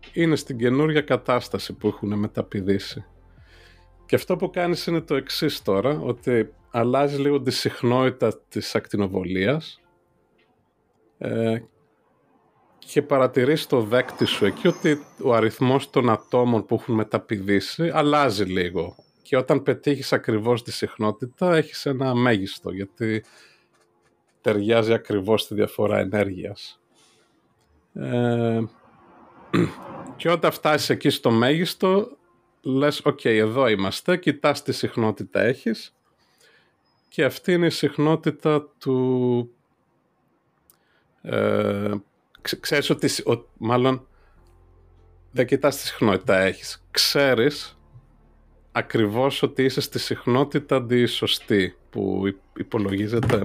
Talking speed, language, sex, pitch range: 105 wpm, Greek, male, 100-140 Hz